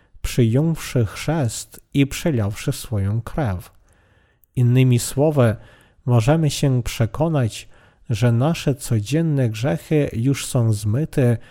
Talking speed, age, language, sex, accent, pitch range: 95 wpm, 40-59, Polish, male, native, 115-150 Hz